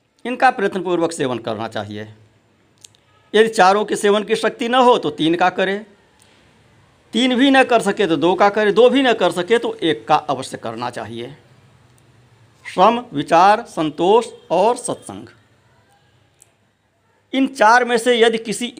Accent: native